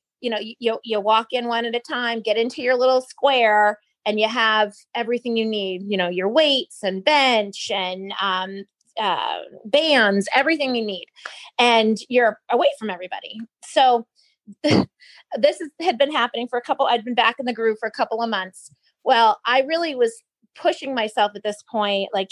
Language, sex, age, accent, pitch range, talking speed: English, female, 30-49, American, 195-255 Hz, 185 wpm